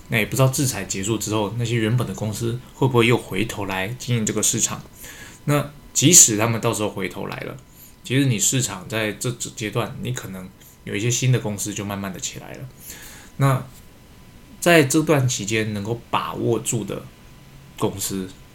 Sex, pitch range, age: male, 100-130 Hz, 20-39